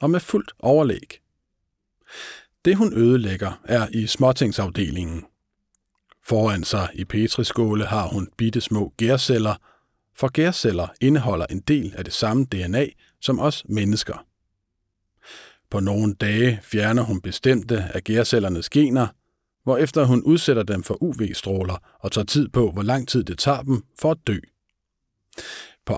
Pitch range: 100-130 Hz